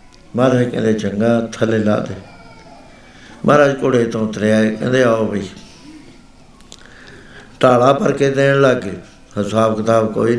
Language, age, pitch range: Punjabi, 60-79, 115-140 Hz